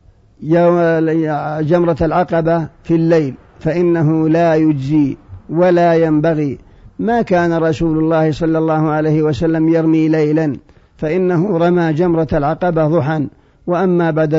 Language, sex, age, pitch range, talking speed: Arabic, male, 50-69, 155-170 Hz, 115 wpm